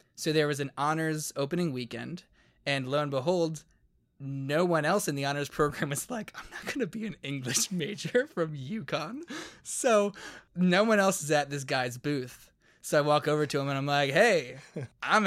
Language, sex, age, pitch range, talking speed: English, male, 20-39, 135-170 Hz, 195 wpm